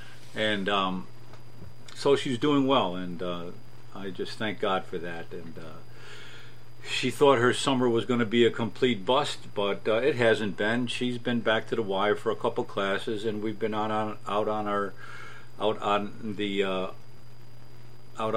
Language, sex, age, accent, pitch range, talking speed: English, male, 50-69, American, 100-125 Hz, 180 wpm